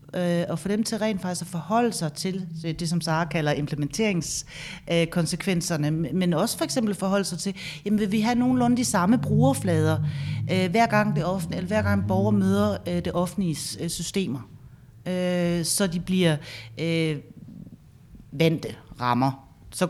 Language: Danish